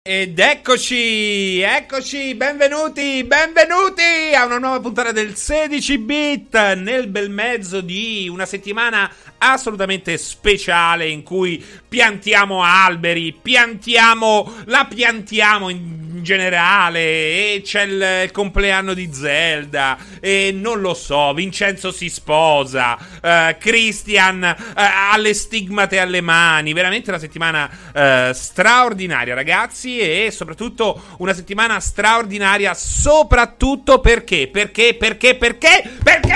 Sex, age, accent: male, 30-49, native